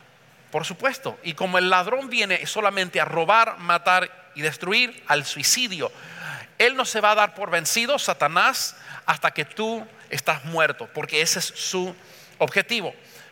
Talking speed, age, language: 155 wpm, 40-59, English